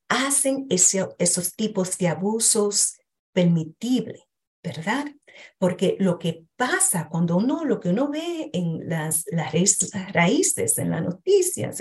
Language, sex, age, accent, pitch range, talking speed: Spanish, female, 40-59, American, 180-270 Hz, 125 wpm